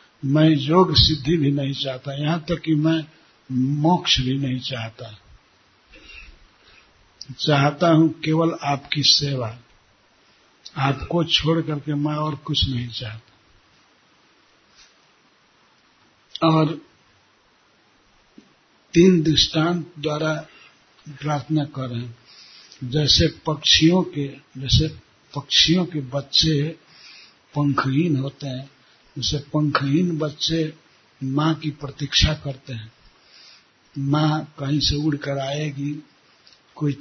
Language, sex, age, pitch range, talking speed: Hindi, male, 60-79, 130-155 Hz, 95 wpm